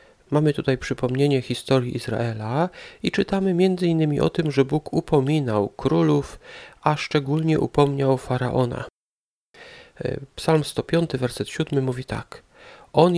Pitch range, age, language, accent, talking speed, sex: 120-150 Hz, 40-59, Polish, native, 115 wpm, male